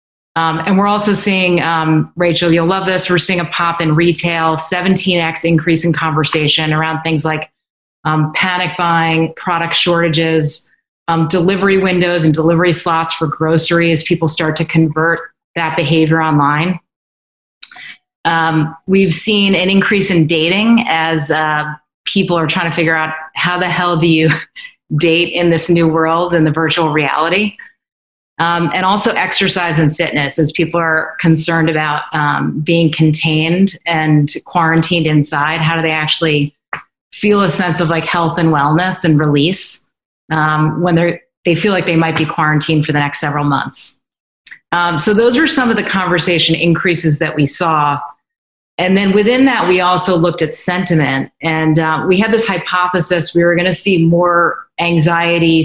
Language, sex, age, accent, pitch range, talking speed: English, female, 30-49, American, 160-180 Hz, 165 wpm